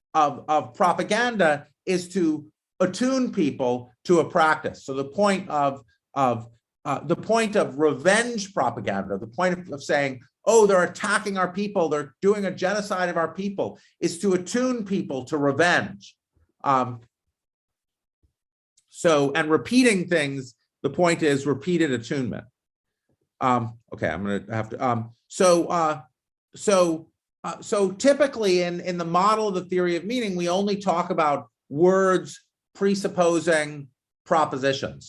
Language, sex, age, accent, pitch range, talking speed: English, male, 50-69, American, 135-185 Hz, 140 wpm